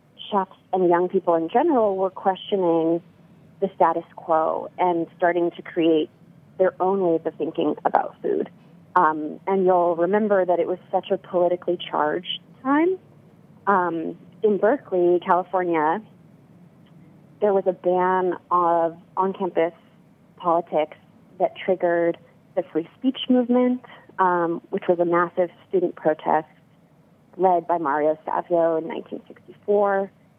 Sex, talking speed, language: female, 125 wpm, English